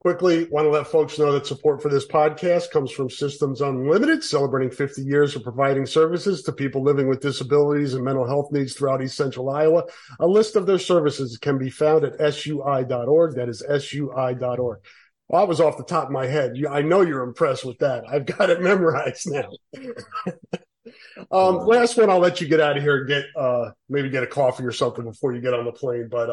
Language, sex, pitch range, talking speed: English, male, 135-170 Hz, 215 wpm